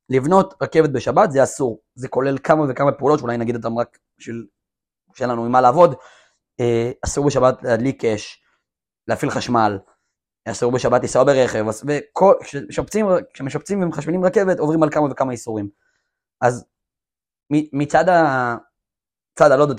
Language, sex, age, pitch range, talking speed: Hebrew, male, 20-39, 120-155 Hz, 125 wpm